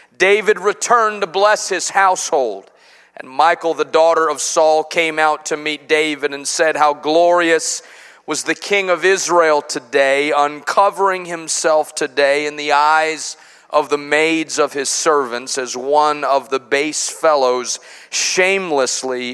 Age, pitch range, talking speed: 40-59, 140-185 Hz, 145 wpm